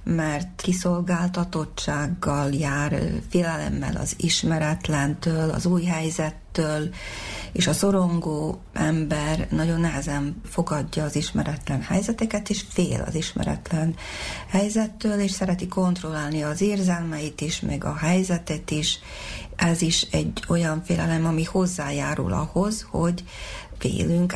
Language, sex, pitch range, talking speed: Hungarian, female, 155-180 Hz, 110 wpm